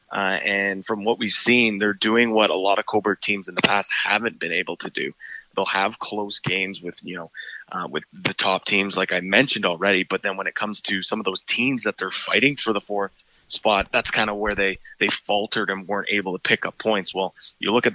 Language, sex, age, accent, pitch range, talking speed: English, male, 20-39, American, 95-110 Hz, 240 wpm